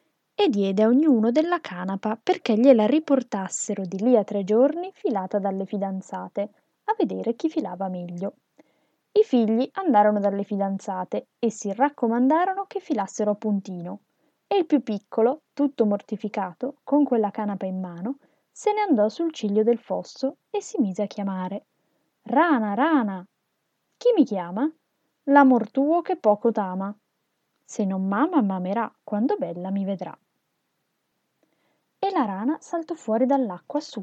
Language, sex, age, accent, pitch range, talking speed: Italian, female, 20-39, native, 200-290 Hz, 145 wpm